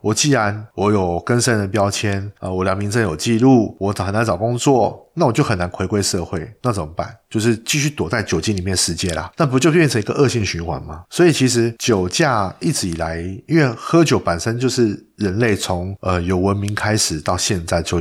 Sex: male